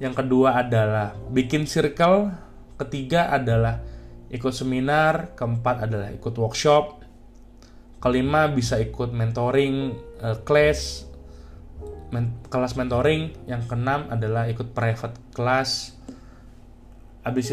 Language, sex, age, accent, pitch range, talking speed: Indonesian, male, 20-39, native, 110-135 Hz, 100 wpm